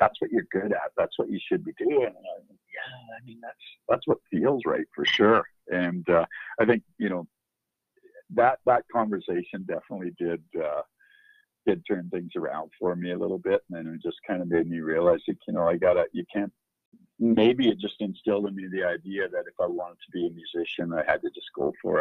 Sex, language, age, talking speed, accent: male, English, 50-69, 230 wpm, American